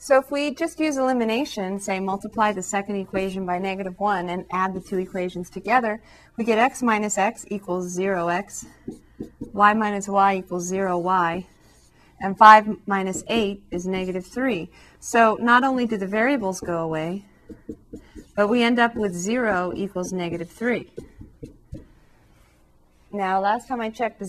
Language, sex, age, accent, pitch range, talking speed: English, female, 30-49, American, 175-215 Hz, 150 wpm